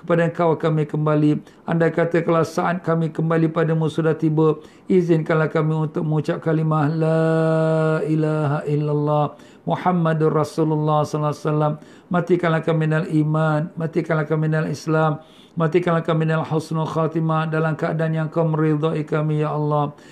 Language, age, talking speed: Malay, 50-69, 135 wpm